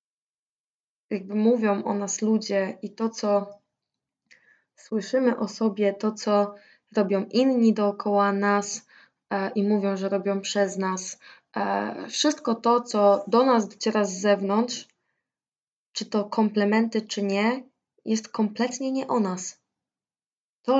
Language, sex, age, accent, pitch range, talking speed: Polish, female, 20-39, native, 200-230 Hz, 120 wpm